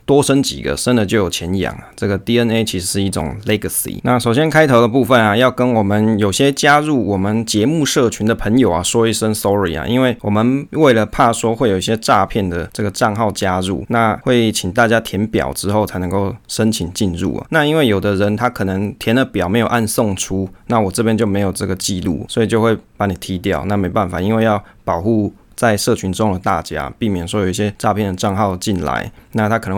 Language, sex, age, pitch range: Chinese, male, 20-39, 95-120 Hz